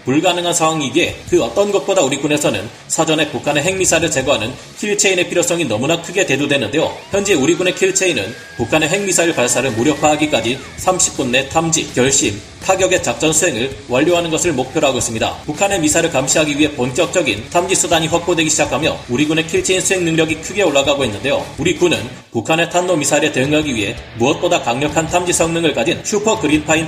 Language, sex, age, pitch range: Korean, male, 30-49, 140-175 Hz